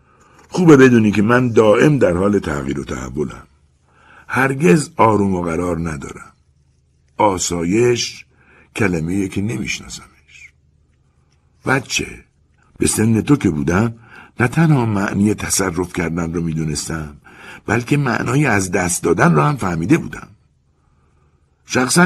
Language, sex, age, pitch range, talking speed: Persian, male, 60-79, 75-125 Hz, 115 wpm